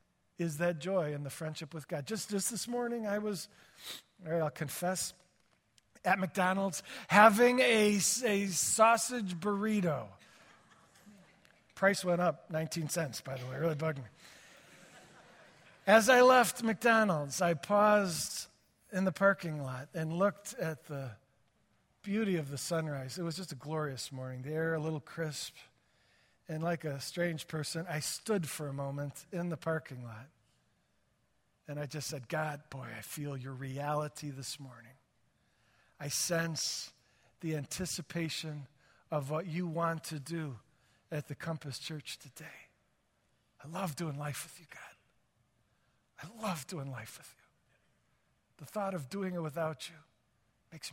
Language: English